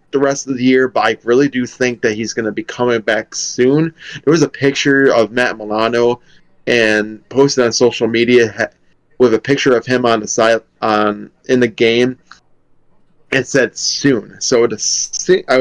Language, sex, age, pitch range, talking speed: English, male, 20-39, 115-135 Hz, 180 wpm